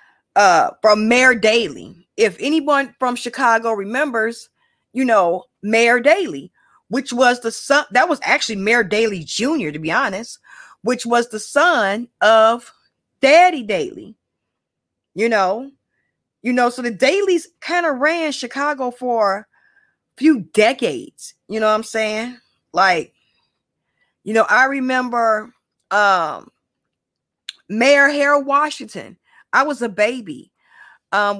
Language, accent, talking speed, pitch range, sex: English, American, 130 wpm, 220-280 Hz, female